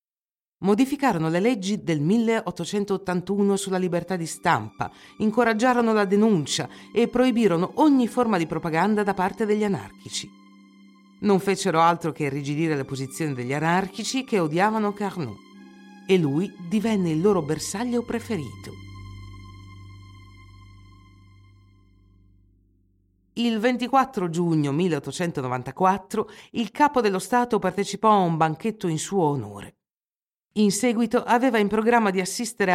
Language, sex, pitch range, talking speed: Italian, female, 135-210 Hz, 115 wpm